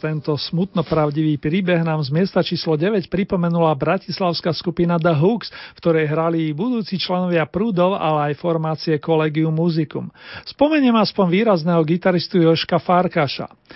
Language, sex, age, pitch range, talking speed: Slovak, male, 40-59, 160-195 Hz, 135 wpm